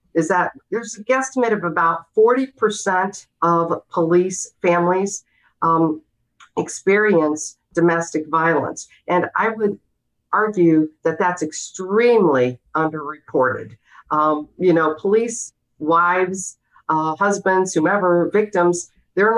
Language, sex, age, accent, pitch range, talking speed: English, female, 50-69, American, 165-205 Hz, 100 wpm